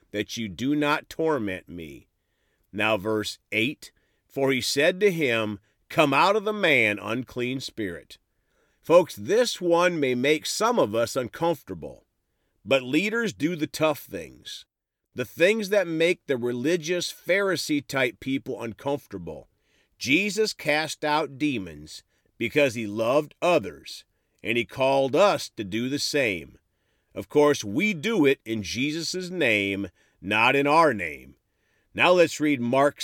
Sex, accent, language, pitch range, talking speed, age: male, American, English, 110-160 Hz, 140 wpm, 50-69